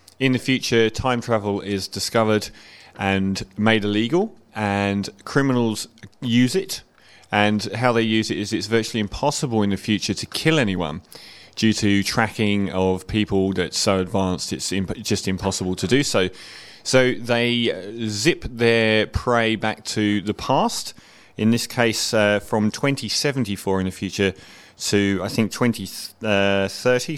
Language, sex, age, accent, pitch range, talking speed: English, male, 30-49, British, 95-115 Hz, 145 wpm